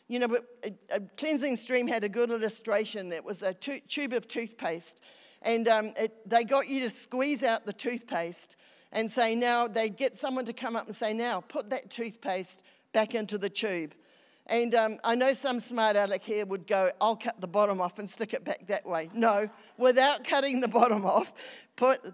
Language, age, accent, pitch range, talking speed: English, 50-69, Australian, 200-255 Hz, 205 wpm